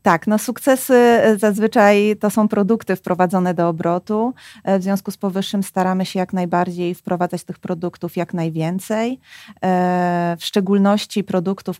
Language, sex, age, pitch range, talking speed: Polish, female, 30-49, 175-205 Hz, 130 wpm